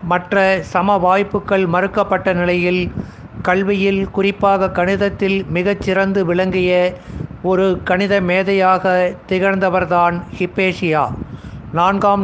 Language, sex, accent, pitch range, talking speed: Tamil, male, native, 180-200 Hz, 80 wpm